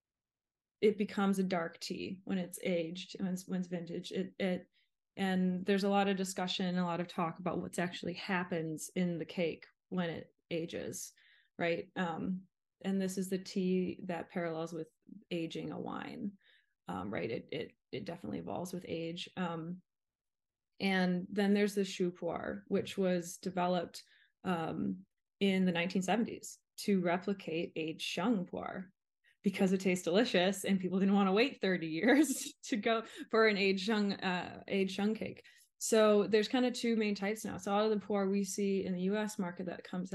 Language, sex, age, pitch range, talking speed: English, female, 20-39, 175-200 Hz, 180 wpm